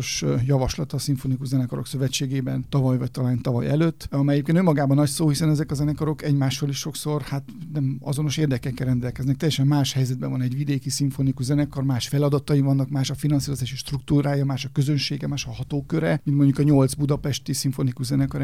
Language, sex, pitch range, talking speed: Hungarian, male, 135-150 Hz, 180 wpm